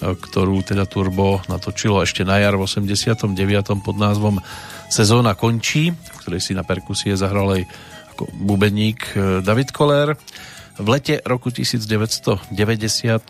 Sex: male